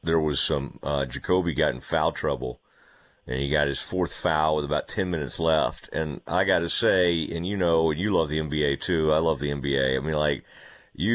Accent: American